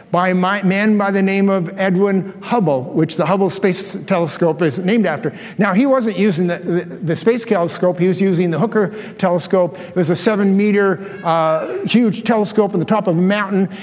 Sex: male